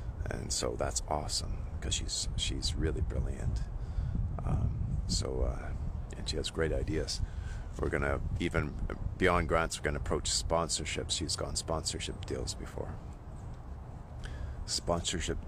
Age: 40-59